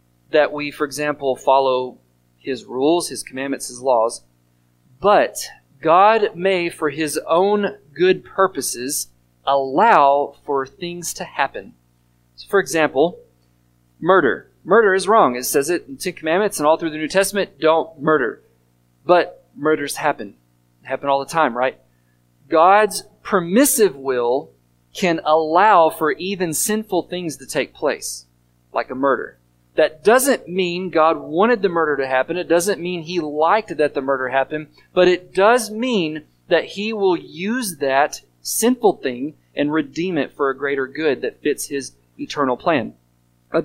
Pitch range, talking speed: 125-175 Hz, 150 wpm